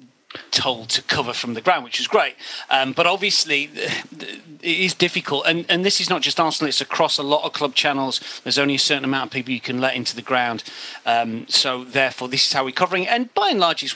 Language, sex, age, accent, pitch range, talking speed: English, male, 40-59, British, 120-150 Hz, 235 wpm